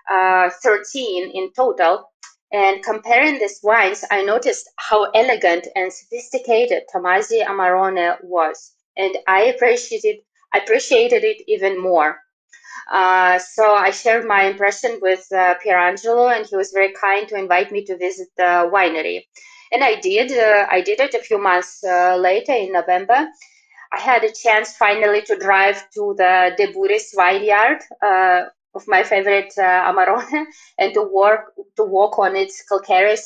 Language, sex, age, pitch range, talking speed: English, female, 20-39, 185-235 Hz, 155 wpm